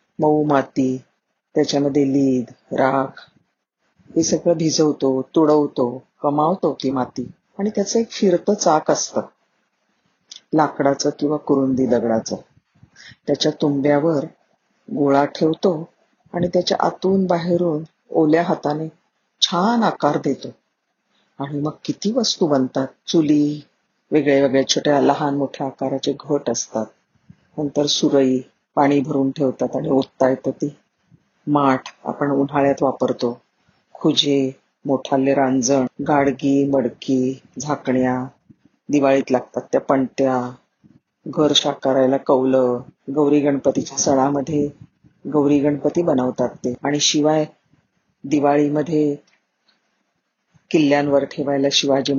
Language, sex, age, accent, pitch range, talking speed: Marathi, female, 40-59, native, 135-150 Hz, 100 wpm